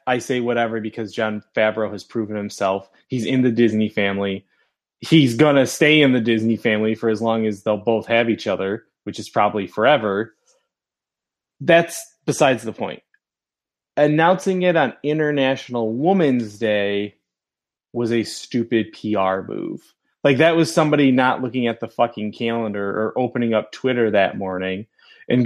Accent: American